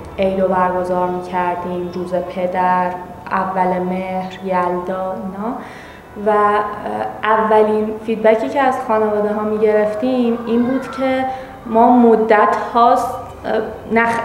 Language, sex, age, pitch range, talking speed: Persian, female, 20-39, 185-215 Hz, 100 wpm